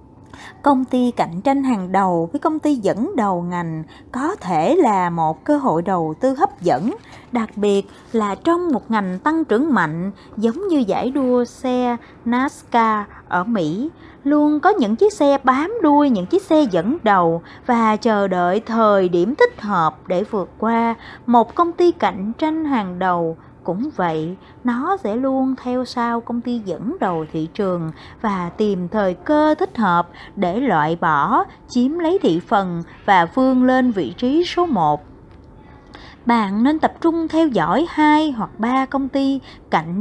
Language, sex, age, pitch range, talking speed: Vietnamese, female, 20-39, 185-275 Hz, 170 wpm